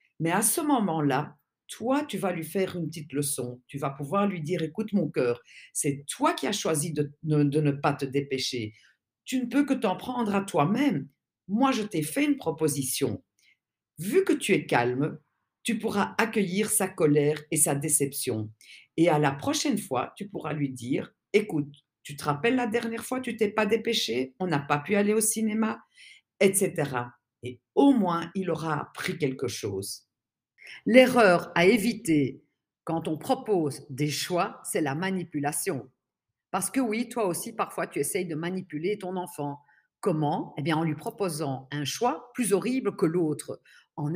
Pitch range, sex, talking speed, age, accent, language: 145-220 Hz, female, 180 wpm, 50-69, French, French